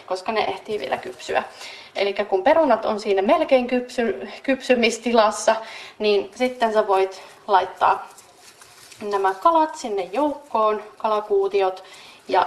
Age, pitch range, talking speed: 30-49, 200-250 Hz, 115 wpm